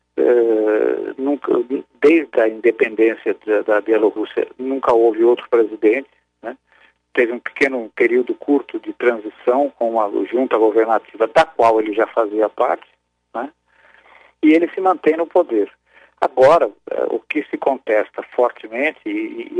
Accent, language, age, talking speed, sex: Brazilian, Portuguese, 50-69, 130 wpm, male